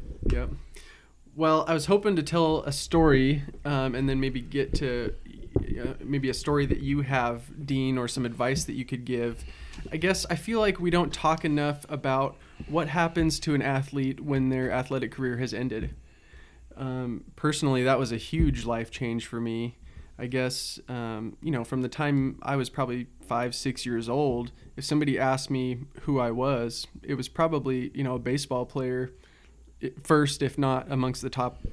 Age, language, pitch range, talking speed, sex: 20-39, English, 120-140 Hz, 185 wpm, male